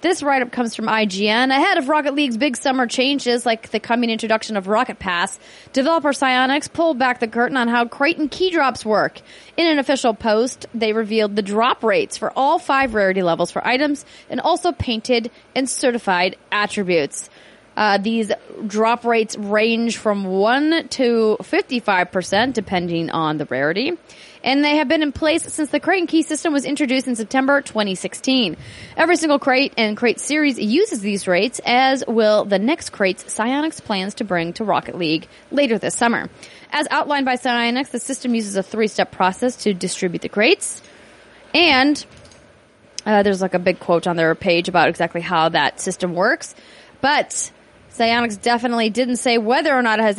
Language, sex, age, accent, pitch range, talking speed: English, female, 30-49, American, 205-275 Hz, 175 wpm